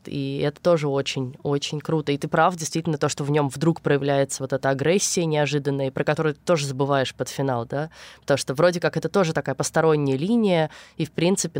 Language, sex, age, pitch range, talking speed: Russian, female, 20-39, 145-175 Hz, 200 wpm